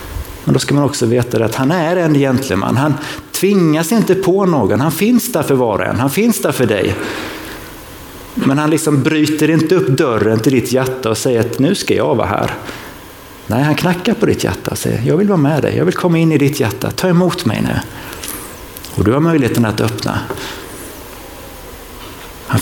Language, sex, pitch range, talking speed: Swedish, male, 115-155 Hz, 205 wpm